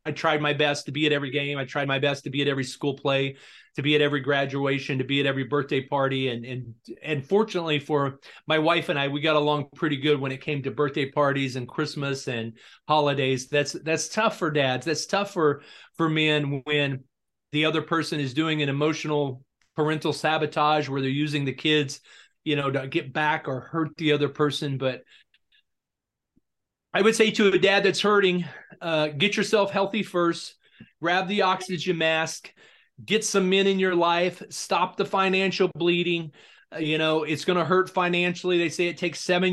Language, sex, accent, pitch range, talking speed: English, male, American, 145-175 Hz, 195 wpm